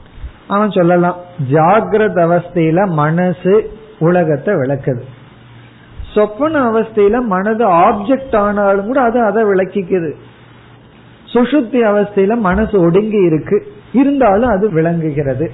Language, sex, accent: Tamil, male, native